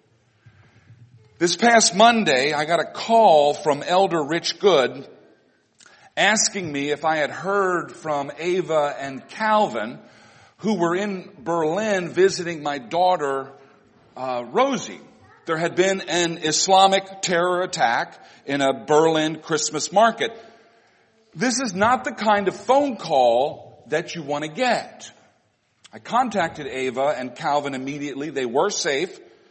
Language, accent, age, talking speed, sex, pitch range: English, American, 50-69, 130 wpm, male, 145-205 Hz